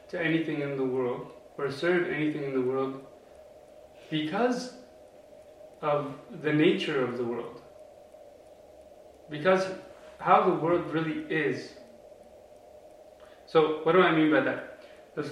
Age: 30-49